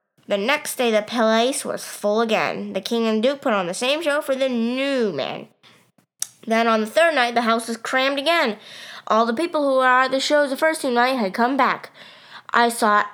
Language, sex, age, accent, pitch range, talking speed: English, female, 20-39, American, 215-275 Hz, 220 wpm